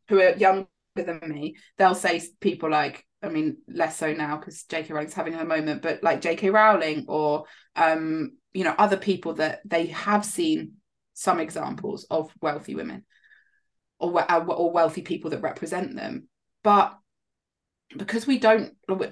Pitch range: 170-215 Hz